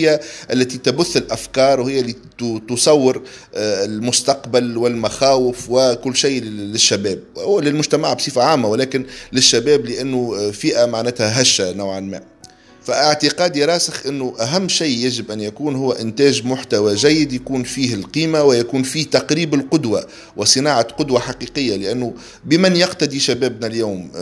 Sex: male